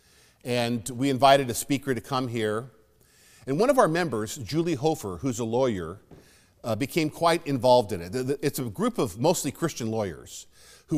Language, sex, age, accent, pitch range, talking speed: English, male, 50-69, American, 125-155 Hz, 175 wpm